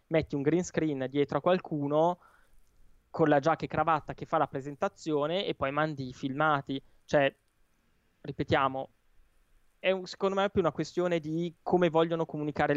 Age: 20-39